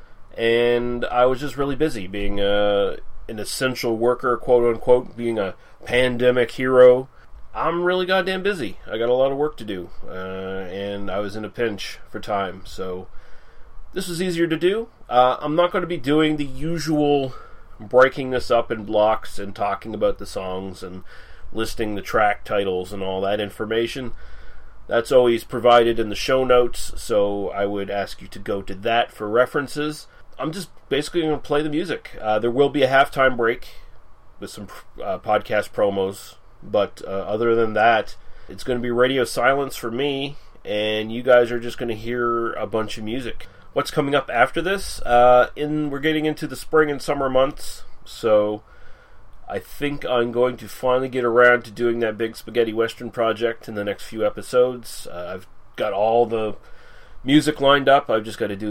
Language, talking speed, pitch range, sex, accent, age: English, 185 wpm, 105-135 Hz, male, American, 30-49